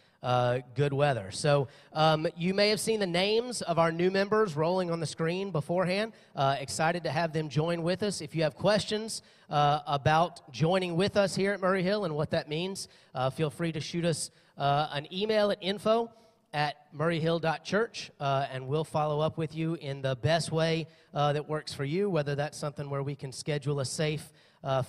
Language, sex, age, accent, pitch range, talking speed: English, male, 30-49, American, 140-170 Hz, 205 wpm